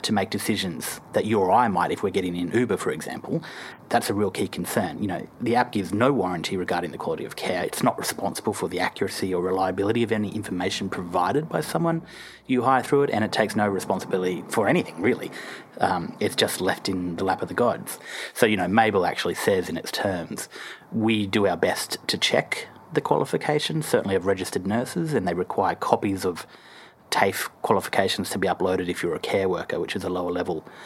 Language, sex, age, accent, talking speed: English, male, 30-49, Australian, 210 wpm